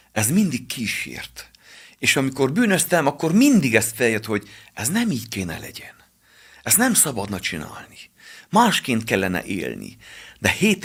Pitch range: 100-130 Hz